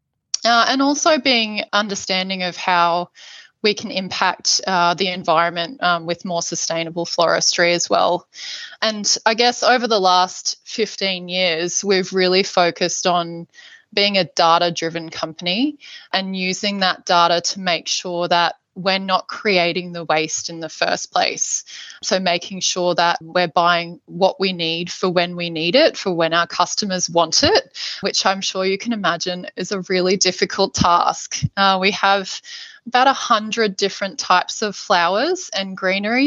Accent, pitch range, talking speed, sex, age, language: Australian, 175-205 Hz, 155 wpm, female, 20-39, English